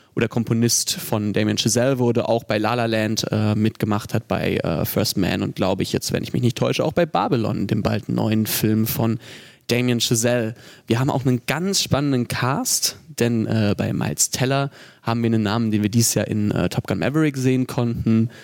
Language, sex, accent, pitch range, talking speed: German, male, German, 110-135 Hz, 210 wpm